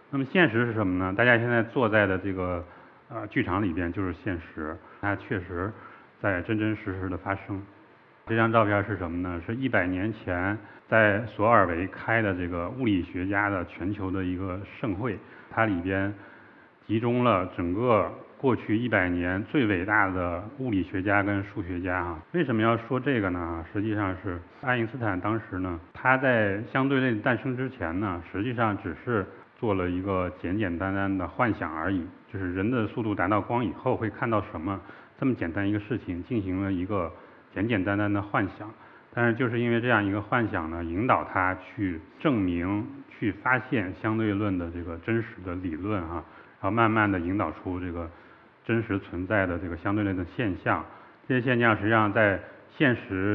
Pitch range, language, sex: 90-115 Hz, Chinese, male